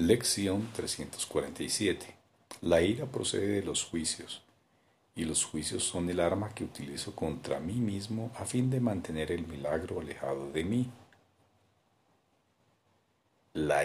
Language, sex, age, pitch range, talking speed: Spanish, male, 50-69, 85-115 Hz, 125 wpm